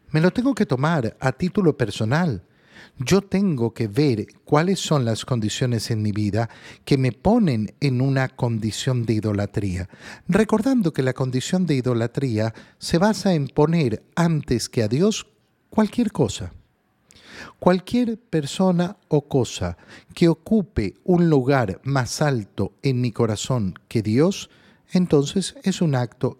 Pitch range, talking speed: 115-175 Hz, 140 wpm